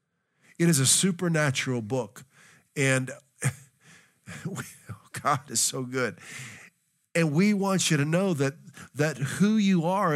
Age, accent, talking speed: 50-69, American, 135 wpm